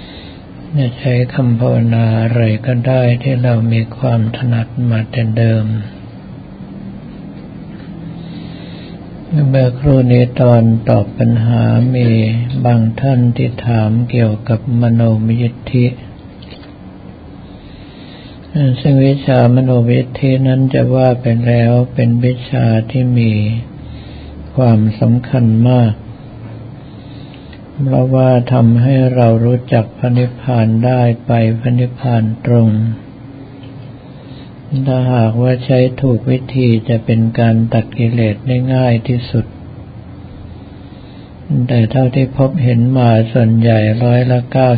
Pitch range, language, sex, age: 115-130 Hz, Thai, male, 60-79